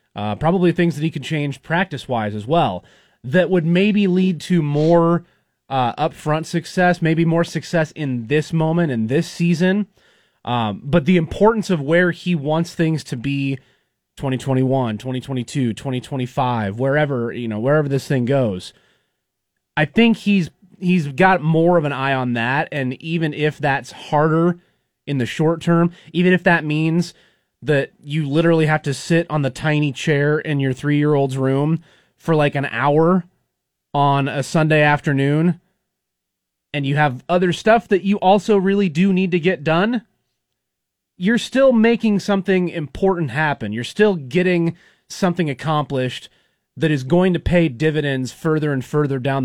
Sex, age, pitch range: male, 30-49, 135-175 Hz